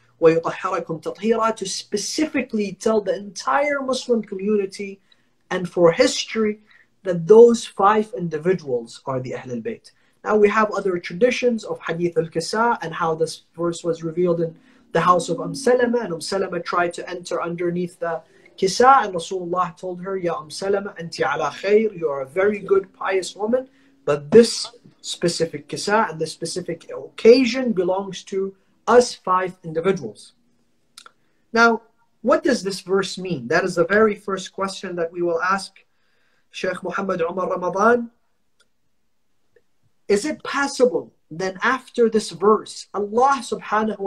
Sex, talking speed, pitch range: male, 140 wpm, 180-230 Hz